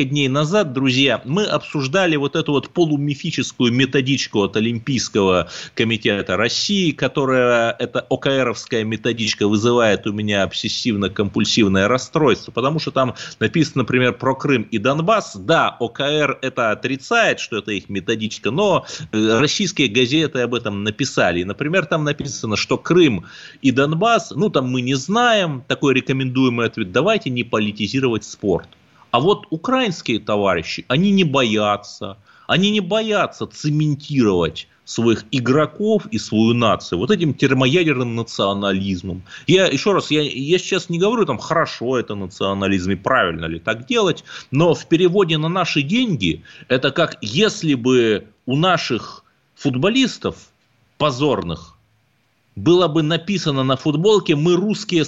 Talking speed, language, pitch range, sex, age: 135 wpm, Russian, 115-160 Hz, male, 30-49